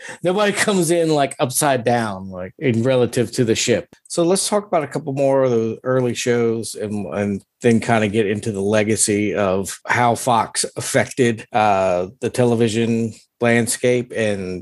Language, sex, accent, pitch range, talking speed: English, male, American, 105-130 Hz, 170 wpm